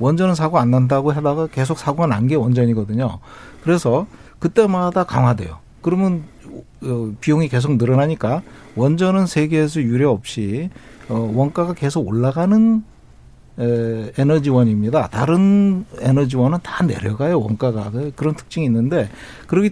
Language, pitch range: Korean, 120-155 Hz